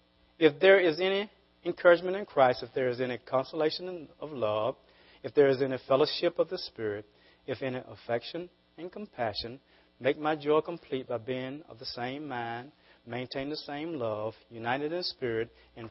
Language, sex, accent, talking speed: English, male, American, 170 wpm